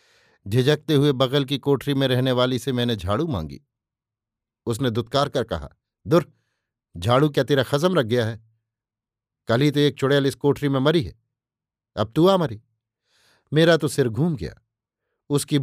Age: 50-69